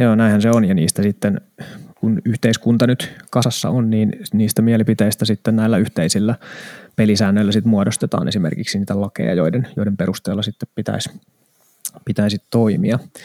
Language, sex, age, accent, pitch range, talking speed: Finnish, male, 20-39, native, 105-125 Hz, 140 wpm